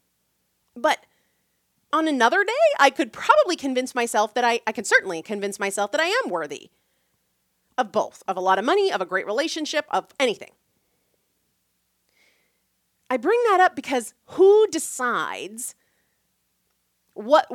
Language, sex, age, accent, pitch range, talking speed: English, female, 30-49, American, 220-300 Hz, 140 wpm